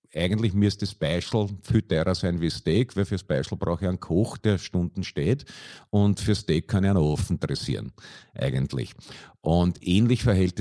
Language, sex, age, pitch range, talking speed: German, male, 50-69, 85-105 Hz, 165 wpm